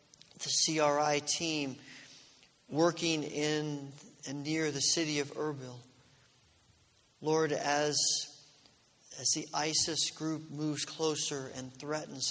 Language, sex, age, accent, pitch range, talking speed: English, male, 40-59, American, 130-150 Hz, 100 wpm